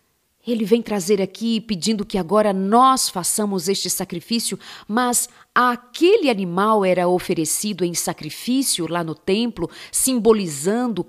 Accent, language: Brazilian, Portuguese